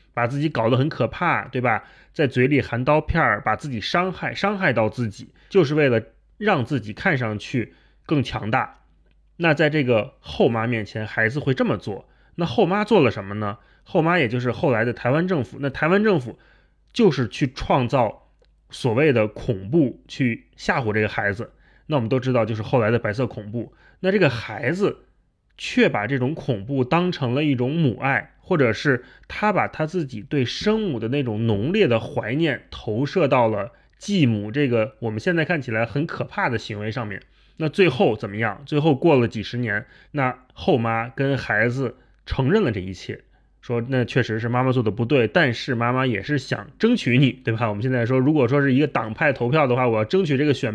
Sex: male